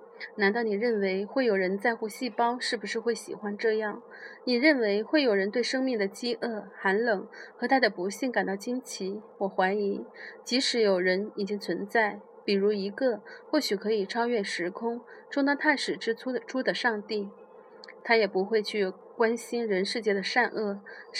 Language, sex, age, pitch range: Chinese, female, 30-49, 200-245 Hz